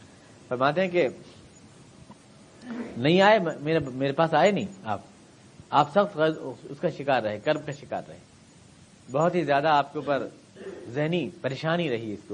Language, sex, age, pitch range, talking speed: Urdu, male, 50-69, 125-155 Hz, 150 wpm